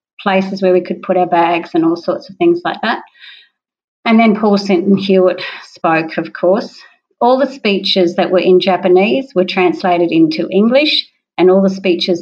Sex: female